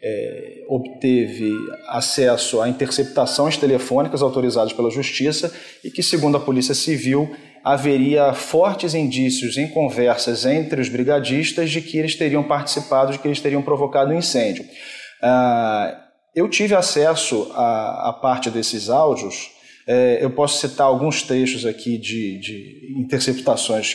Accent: Brazilian